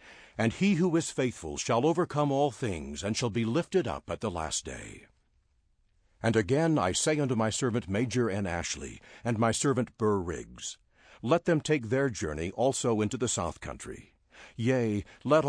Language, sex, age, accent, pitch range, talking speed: English, male, 60-79, American, 105-140 Hz, 175 wpm